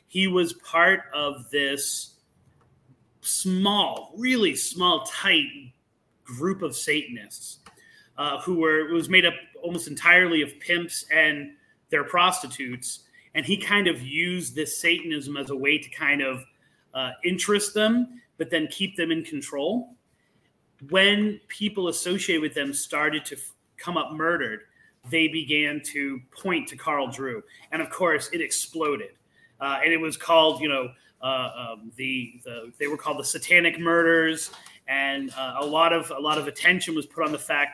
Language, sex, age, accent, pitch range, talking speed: English, male, 30-49, American, 140-175 Hz, 160 wpm